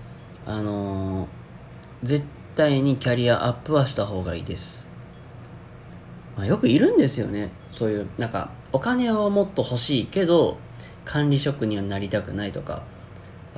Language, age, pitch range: Japanese, 40-59, 100-135 Hz